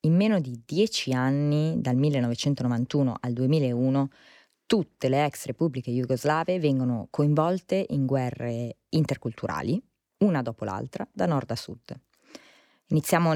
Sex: female